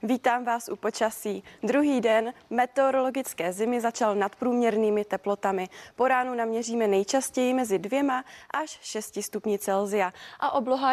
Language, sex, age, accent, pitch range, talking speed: Czech, female, 20-39, native, 210-255 Hz, 125 wpm